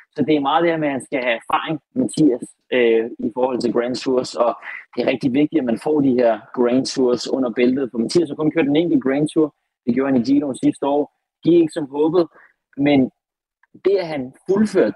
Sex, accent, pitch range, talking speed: male, native, 115-150 Hz, 235 wpm